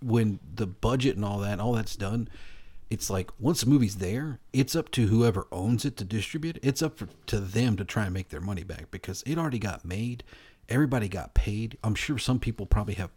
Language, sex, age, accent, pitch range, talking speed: English, male, 40-59, American, 95-115 Hz, 220 wpm